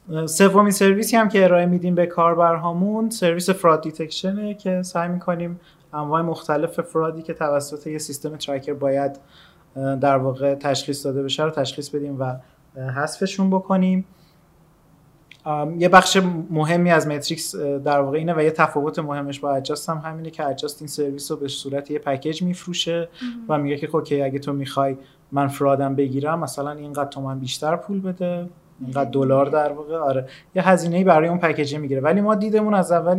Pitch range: 140-170 Hz